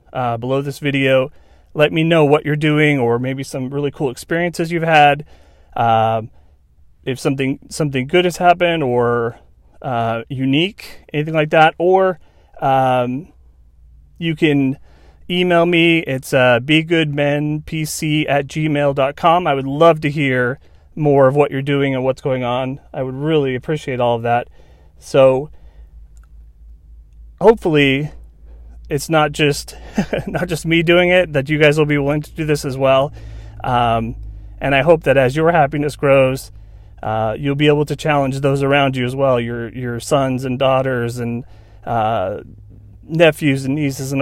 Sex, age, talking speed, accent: male, 30-49, 155 wpm, American